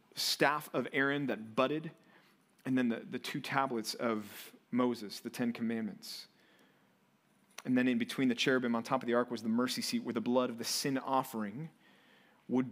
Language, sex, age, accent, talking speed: English, male, 30-49, American, 185 wpm